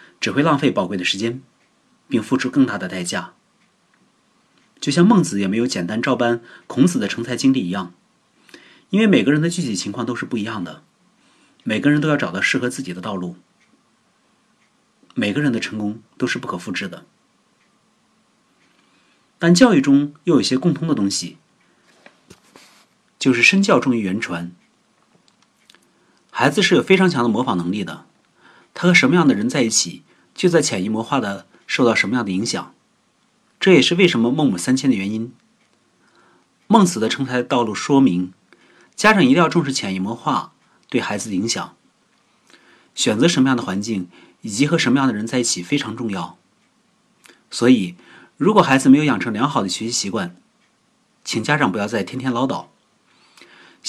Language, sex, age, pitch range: Chinese, male, 30-49, 105-170 Hz